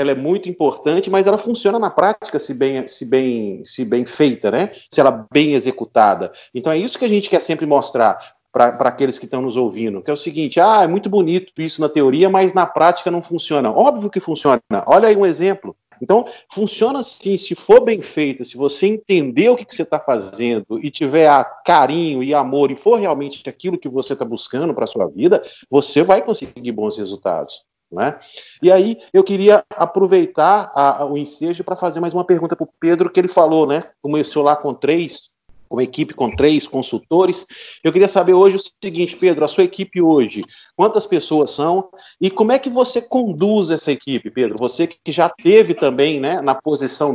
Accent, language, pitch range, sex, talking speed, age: Brazilian, Portuguese, 135-190 Hz, male, 205 wpm, 40-59